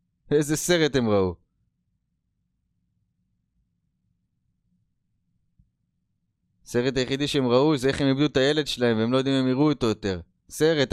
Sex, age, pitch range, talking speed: male, 20-39, 95-130 Hz, 130 wpm